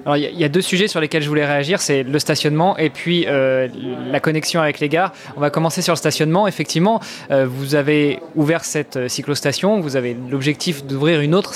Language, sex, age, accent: French, male, 20-39, French